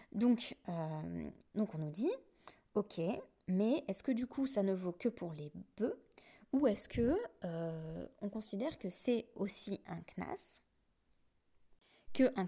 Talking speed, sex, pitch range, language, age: 150 wpm, female, 180-235 Hz, French, 20-39